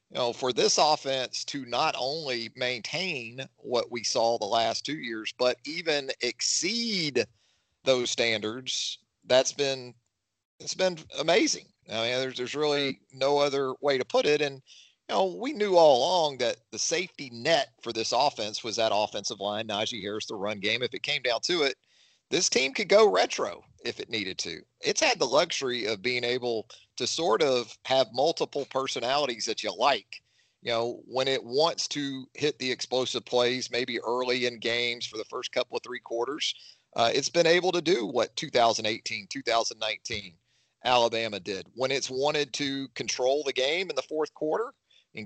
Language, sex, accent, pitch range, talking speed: English, male, American, 115-150 Hz, 180 wpm